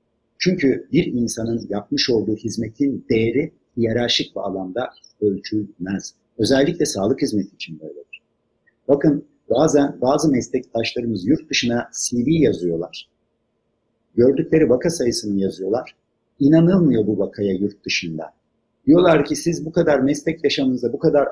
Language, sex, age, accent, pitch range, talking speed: Turkish, male, 50-69, native, 110-145 Hz, 120 wpm